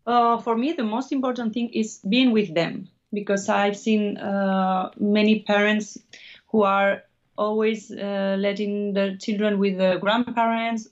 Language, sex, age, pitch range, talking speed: English, female, 30-49, 185-215 Hz, 150 wpm